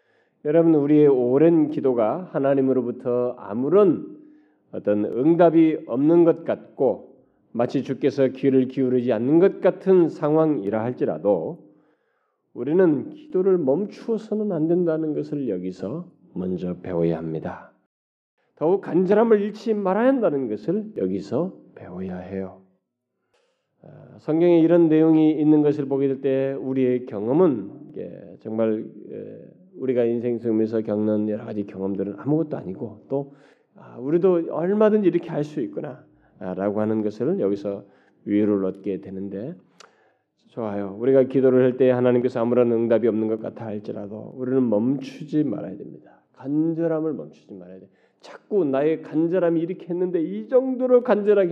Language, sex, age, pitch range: Korean, male, 40-59, 105-170 Hz